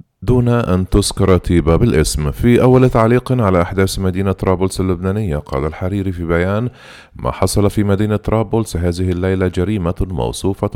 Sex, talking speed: male, 145 wpm